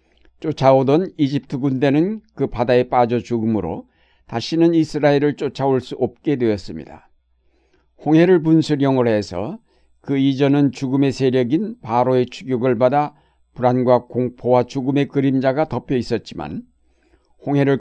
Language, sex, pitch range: Korean, male, 115-145 Hz